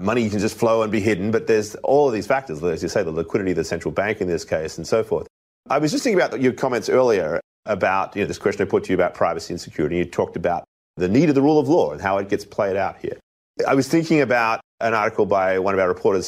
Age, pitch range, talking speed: 30-49, 95-115 Hz, 285 wpm